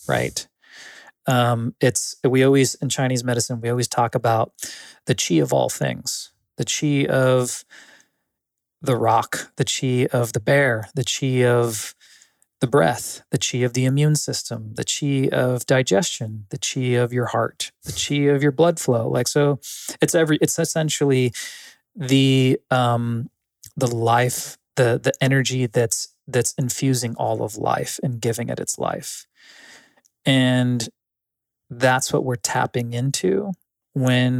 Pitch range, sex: 120-140 Hz, male